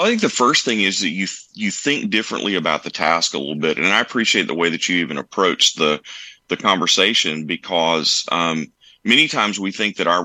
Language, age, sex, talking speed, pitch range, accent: English, 30-49, male, 215 wpm, 85-95 Hz, American